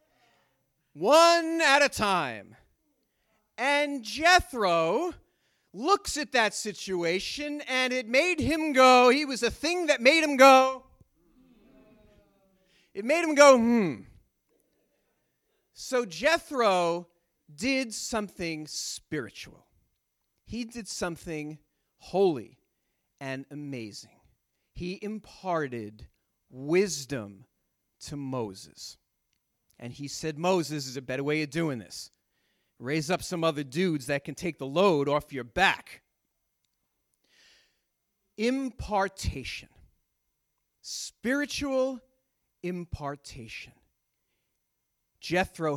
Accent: American